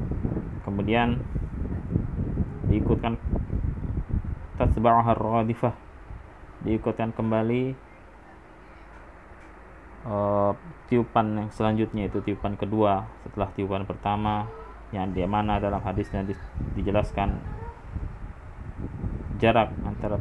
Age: 20-39